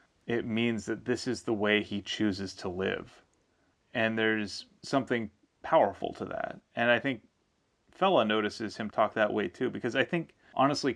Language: English